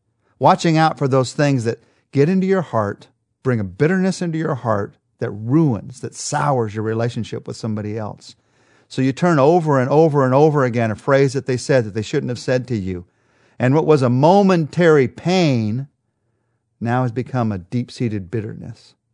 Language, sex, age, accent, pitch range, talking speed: English, male, 40-59, American, 115-160 Hz, 180 wpm